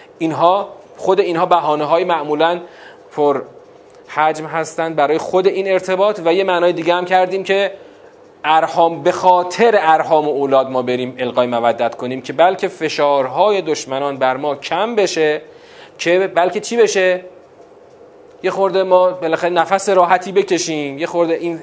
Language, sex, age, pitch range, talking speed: Persian, male, 30-49, 140-185 Hz, 145 wpm